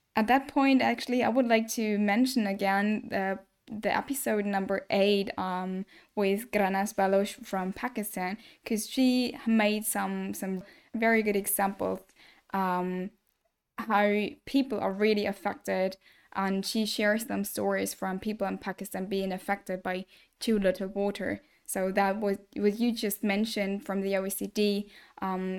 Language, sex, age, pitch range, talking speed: English, female, 10-29, 195-225 Hz, 145 wpm